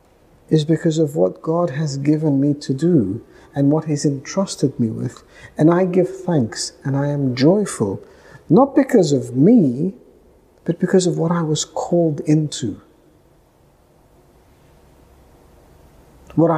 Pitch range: 145-195 Hz